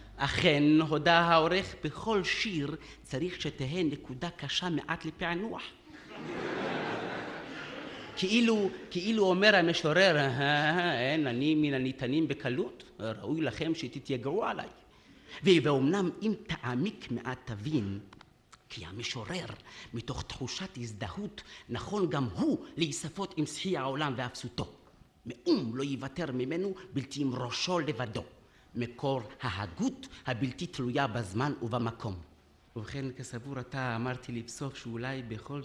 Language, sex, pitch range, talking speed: Hebrew, male, 120-160 Hz, 105 wpm